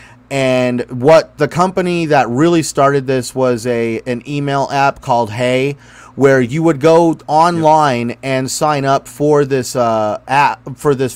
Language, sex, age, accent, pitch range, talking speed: English, male, 30-49, American, 120-140 Hz, 155 wpm